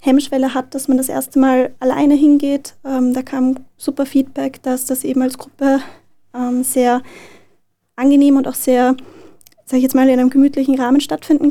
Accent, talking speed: German, 175 wpm